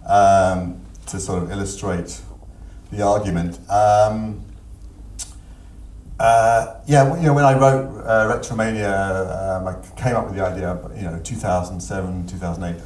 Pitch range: 90-115 Hz